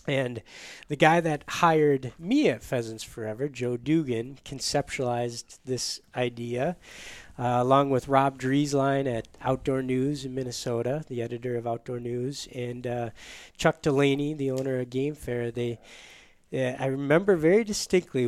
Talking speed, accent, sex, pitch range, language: 145 wpm, American, male, 120-145 Hz, English